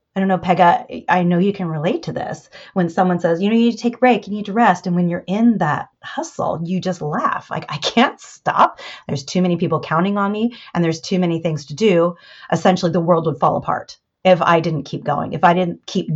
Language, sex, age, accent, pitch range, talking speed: English, female, 30-49, American, 155-180 Hz, 255 wpm